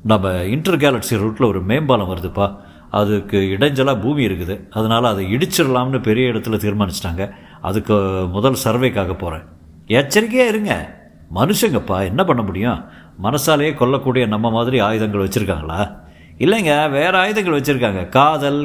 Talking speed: 120 wpm